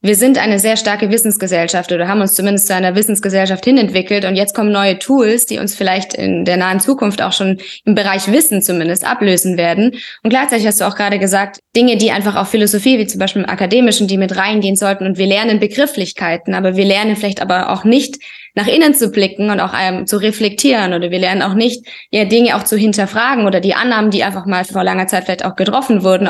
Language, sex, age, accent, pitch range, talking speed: German, female, 20-39, German, 195-230 Hz, 220 wpm